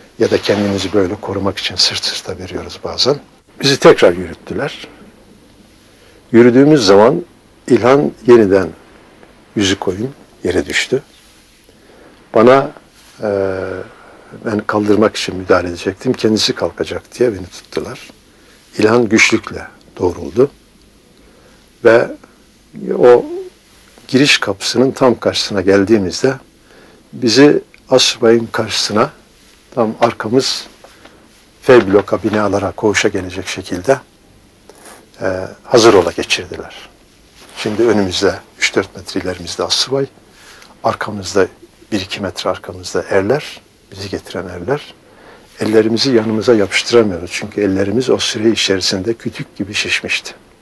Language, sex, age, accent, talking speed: Turkish, male, 60-79, native, 95 wpm